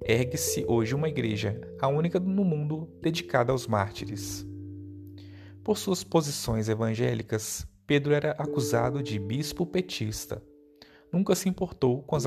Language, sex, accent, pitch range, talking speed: Portuguese, male, Brazilian, 110-155 Hz, 125 wpm